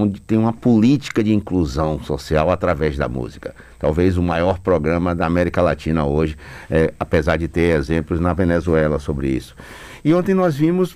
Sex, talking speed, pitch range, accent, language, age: male, 165 wpm, 90-140 Hz, Brazilian, Portuguese, 60-79